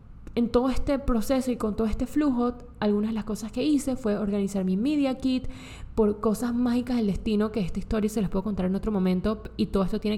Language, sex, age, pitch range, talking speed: Spanish, female, 10-29, 185-215 Hz, 230 wpm